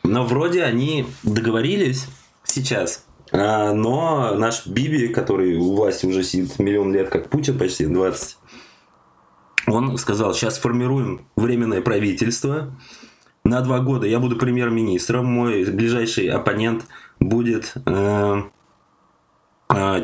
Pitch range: 100-125 Hz